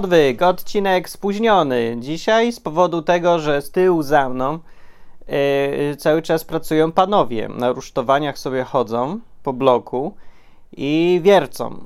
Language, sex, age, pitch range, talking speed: Polish, male, 20-39, 130-170 Hz, 120 wpm